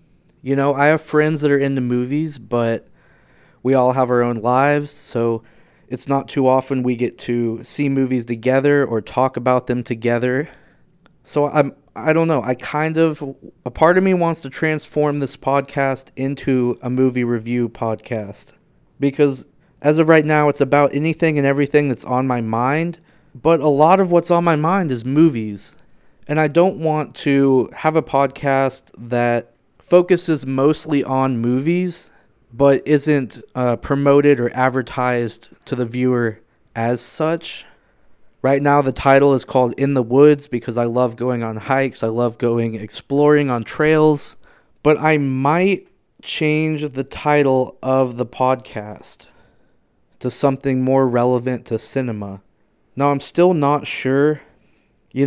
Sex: male